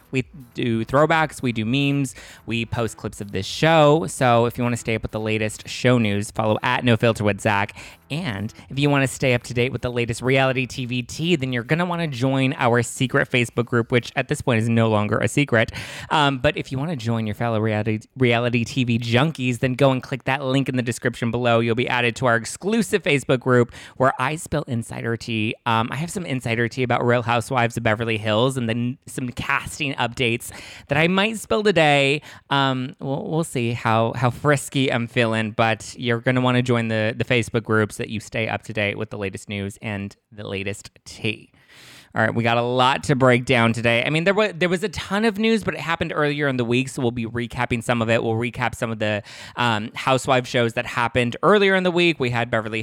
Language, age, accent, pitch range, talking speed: English, 20-39, American, 115-135 Hz, 235 wpm